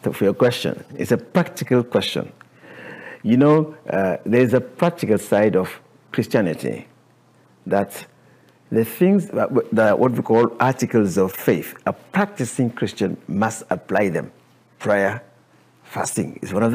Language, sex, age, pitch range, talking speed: English, male, 50-69, 115-170 Hz, 135 wpm